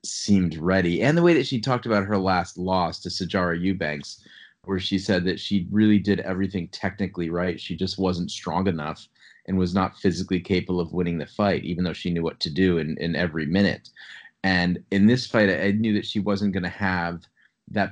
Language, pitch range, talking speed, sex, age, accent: English, 85-100 Hz, 210 wpm, male, 30-49, American